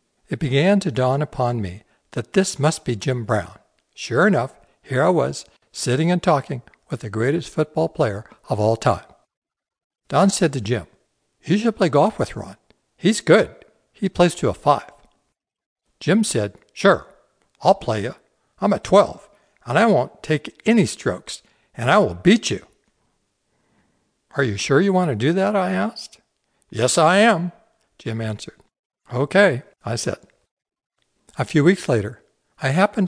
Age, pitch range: 60-79, 115-175 Hz